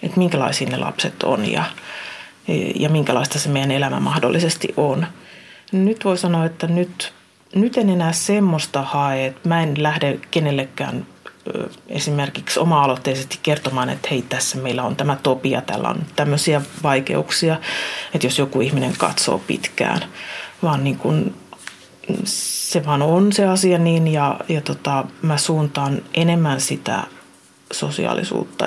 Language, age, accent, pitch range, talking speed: Finnish, 30-49, native, 145-185 Hz, 135 wpm